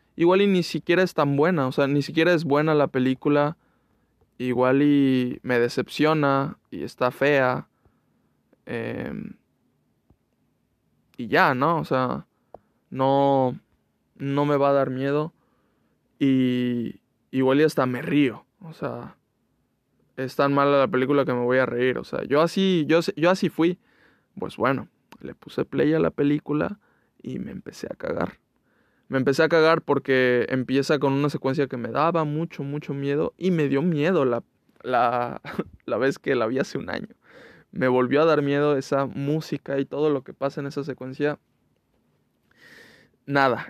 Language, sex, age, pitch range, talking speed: Spanish, male, 20-39, 135-155 Hz, 160 wpm